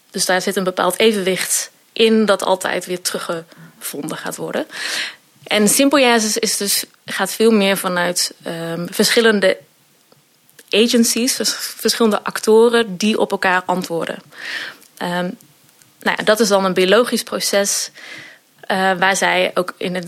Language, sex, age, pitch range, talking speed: Dutch, female, 20-39, 190-230 Hz, 130 wpm